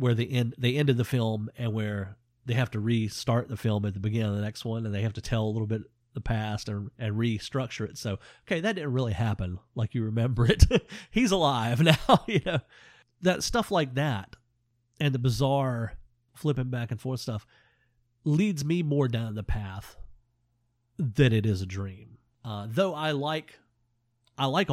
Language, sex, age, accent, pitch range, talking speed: English, male, 40-59, American, 110-130 Hz, 195 wpm